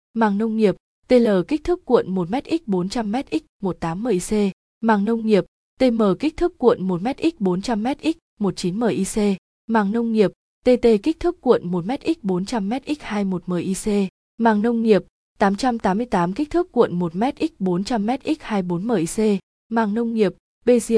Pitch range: 195-240 Hz